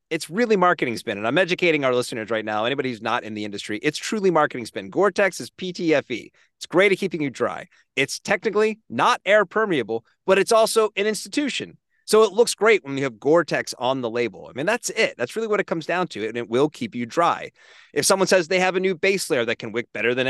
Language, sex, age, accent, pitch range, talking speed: English, male, 30-49, American, 120-190 Hz, 240 wpm